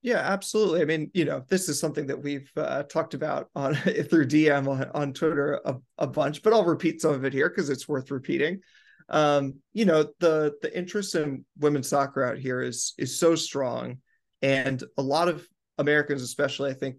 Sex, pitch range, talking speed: male, 135-160 Hz, 200 wpm